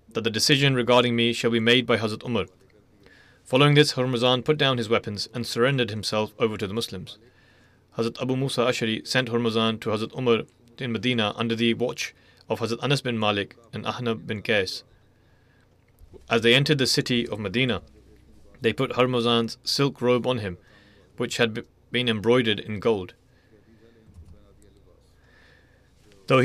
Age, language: 30-49, English